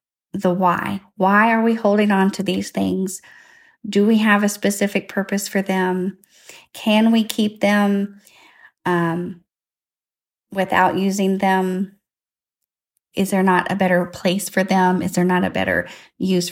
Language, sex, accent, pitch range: English, female, American, 180-205 Hz